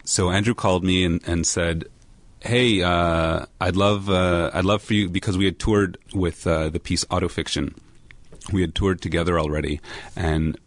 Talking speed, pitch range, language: 175 wpm, 80-95 Hz, English